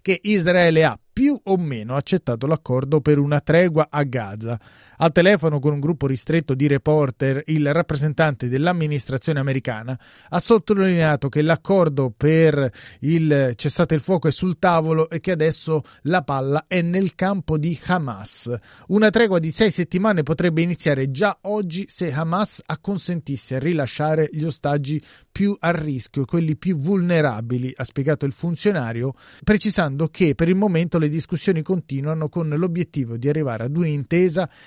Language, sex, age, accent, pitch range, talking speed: Italian, male, 30-49, native, 140-175 Hz, 150 wpm